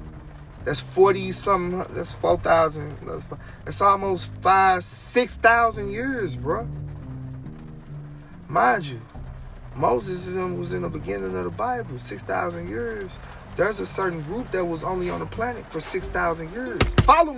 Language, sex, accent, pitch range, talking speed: English, male, American, 185-265 Hz, 125 wpm